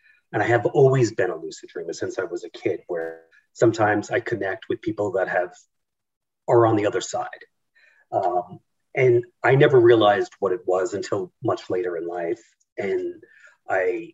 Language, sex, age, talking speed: English, male, 40-59, 175 wpm